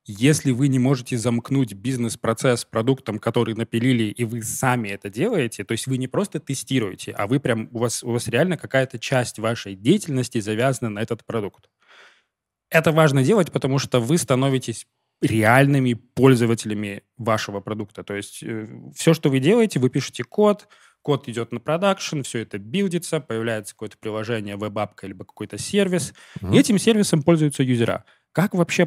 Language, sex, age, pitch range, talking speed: Russian, male, 20-39, 115-155 Hz, 160 wpm